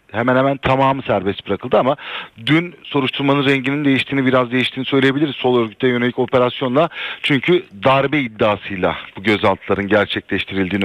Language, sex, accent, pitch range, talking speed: Turkish, male, native, 110-135 Hz, 125 wpm